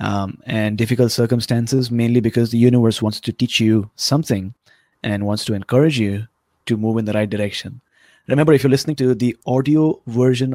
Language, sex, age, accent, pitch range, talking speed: English, male, 30-49, Indian, 110-140 Hz, 180 wpm